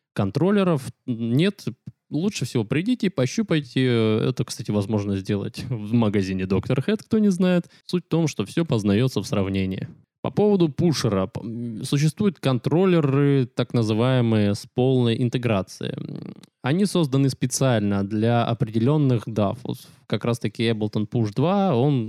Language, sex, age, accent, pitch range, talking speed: Russian, male, 20-39, native, 110-145 Hz, 130 wpm